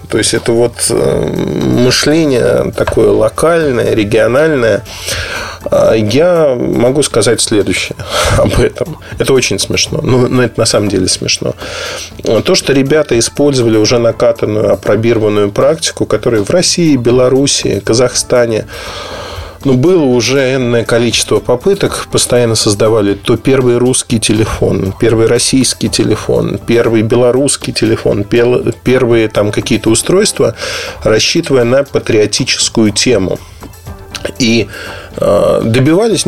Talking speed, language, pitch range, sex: 105 wpm, Russian, 105-130 Hz, male